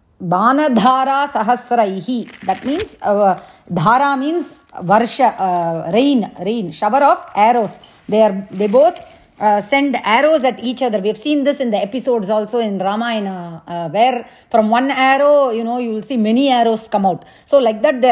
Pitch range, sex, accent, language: 210-275 Hz, female, Indian, English